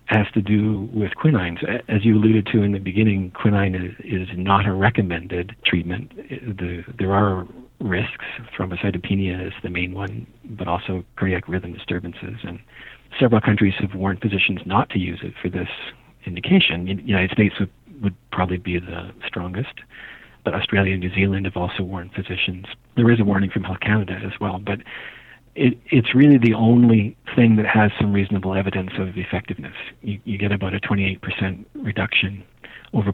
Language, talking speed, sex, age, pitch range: English, 170 wpm, male, 50-69, 95-110 Hz